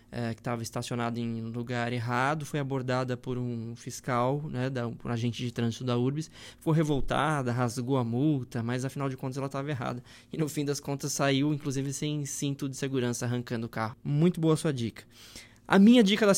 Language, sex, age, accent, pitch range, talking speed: Portuguese, male, 20-39, Brazilian, 125-145 Hz, 200 wpm